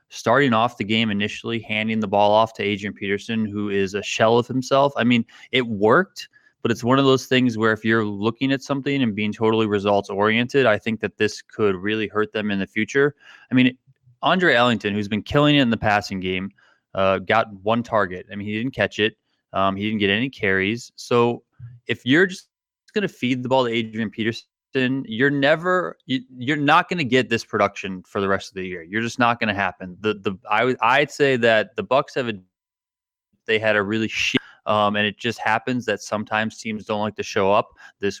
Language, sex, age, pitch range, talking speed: English, male, 20-39, 105-130 Hz, 225 wpm